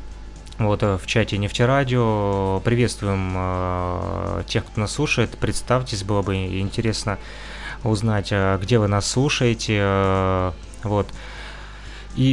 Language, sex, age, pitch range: Russian, male, 20-39, 100-120 Hz